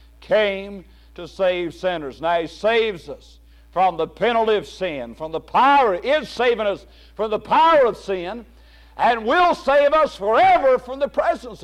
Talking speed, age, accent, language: 165 wpm, 60-79, American, English